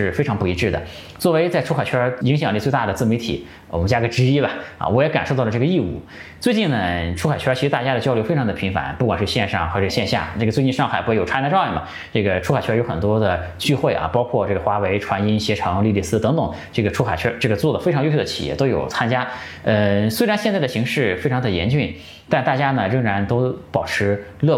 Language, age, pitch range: Chinese, 20-39, 95-130 Hz